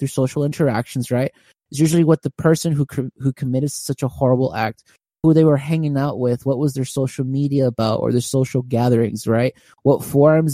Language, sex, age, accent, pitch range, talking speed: English, male, 20-39, American, 130-170 Hz, 200 wpm